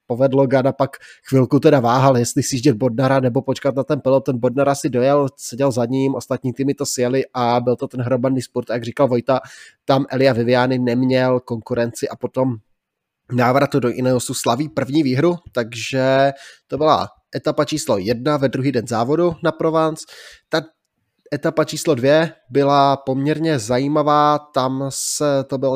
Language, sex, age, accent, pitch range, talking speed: Czech, male, 20-39, native, 125-140 Hz, 165 wpm